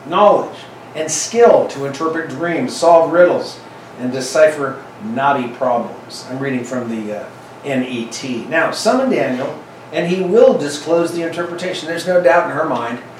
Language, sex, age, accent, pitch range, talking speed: English, male, 40-59, American, 130-170 Hz, 150 wpm